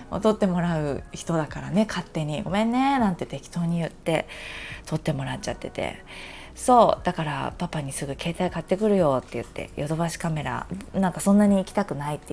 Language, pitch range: Japanese, 155-230 Hz